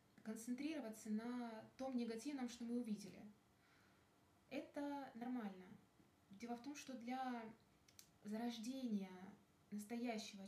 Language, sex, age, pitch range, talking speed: Russian, female, 20-39, 195-235 Hz, 90 wpm